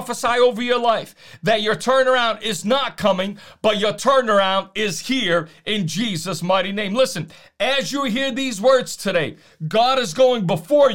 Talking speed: 165 wpm